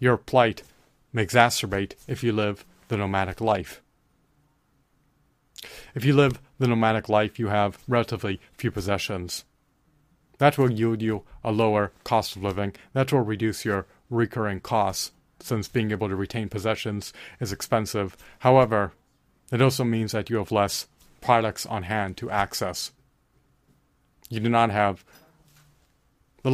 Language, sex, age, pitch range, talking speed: English, male, 30-49, 105-125 Hz, 140 wpm